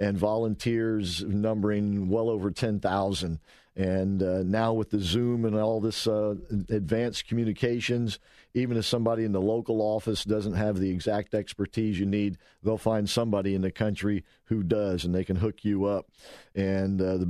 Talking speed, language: 170 wpm, English